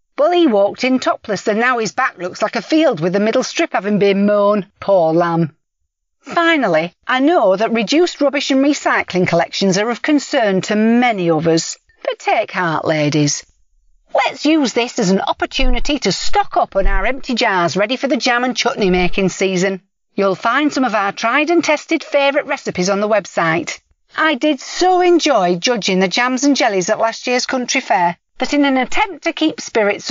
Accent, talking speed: British, 195 wpm